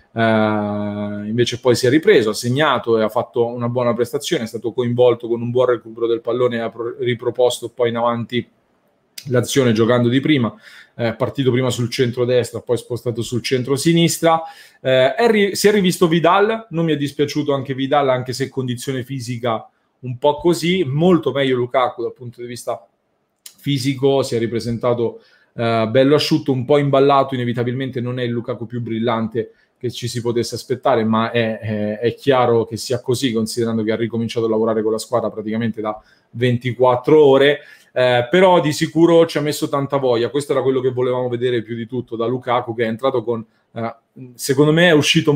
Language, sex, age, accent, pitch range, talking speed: Italian, male, 30-49, native, 115-140 Hz, 190 wpm